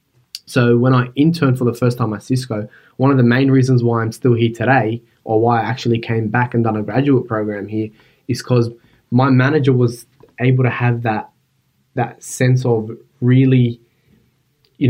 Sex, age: male, 20-39